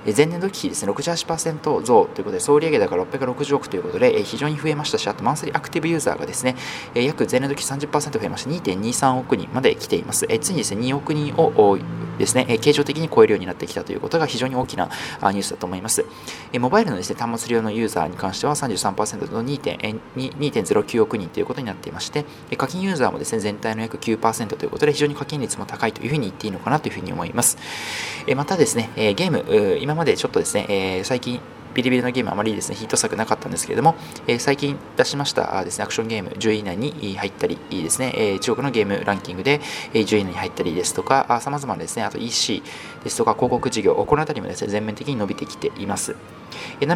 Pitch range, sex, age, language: 110-150 Hz, male, 20-39, Japanese